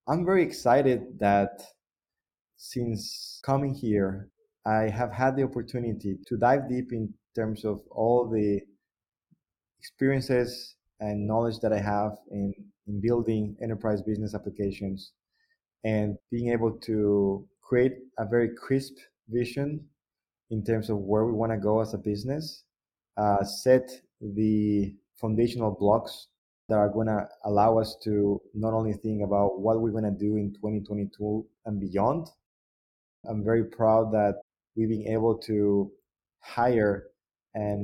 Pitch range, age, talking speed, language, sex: 105-120 Hz, 20-39, 135 wpm, English, male